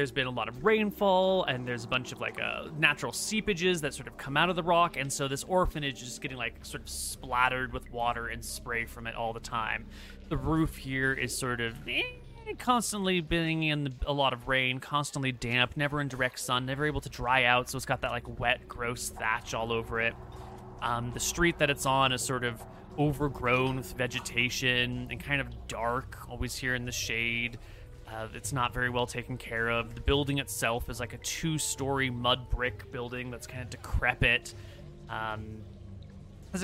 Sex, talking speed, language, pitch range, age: male, 205 wpm, English, 115-140 Hz, 30-49